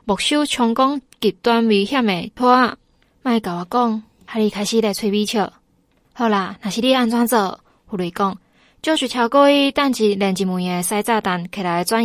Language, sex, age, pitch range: Chinese, female, 20-39, 195-255 Hz